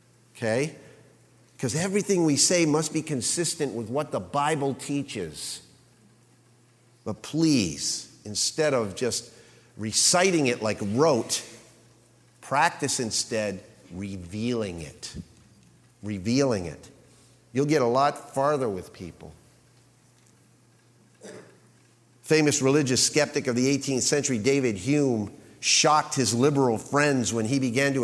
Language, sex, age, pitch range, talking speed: English, male, 50-69, 120-155 Hz, 110 wpm